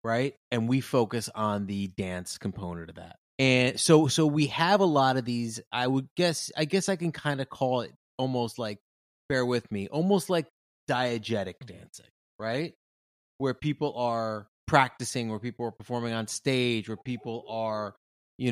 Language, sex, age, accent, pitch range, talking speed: English, male, 30-49, American, 100-130 Hz, 175 wpm